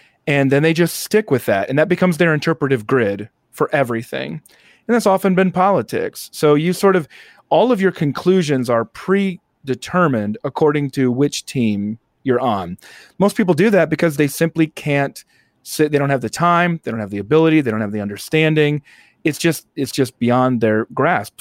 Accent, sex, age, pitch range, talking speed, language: American, male, 30-49, 125-165 Hz, 190 wpm, English